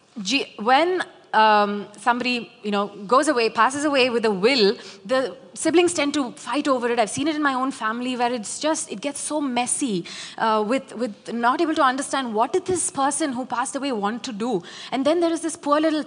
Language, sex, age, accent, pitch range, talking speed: English, female, 30-49, Indian, 215-280 Hz, 215 wpm